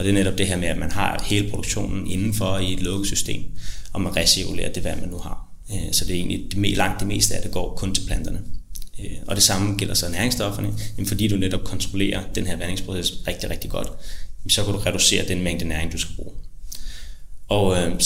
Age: 30-49